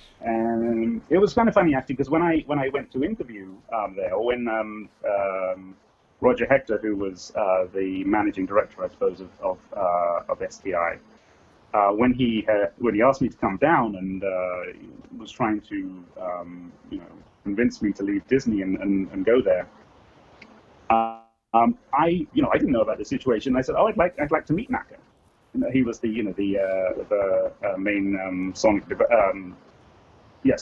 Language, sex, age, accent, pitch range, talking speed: English, male, 30-49, British, 100-130 Hz, 200 wpm